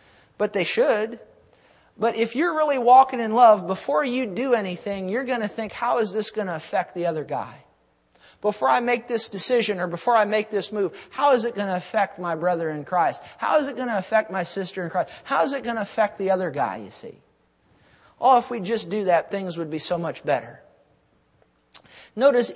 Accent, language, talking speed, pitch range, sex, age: American, English, 220 wpm, 170-220 Hz, male, 50-69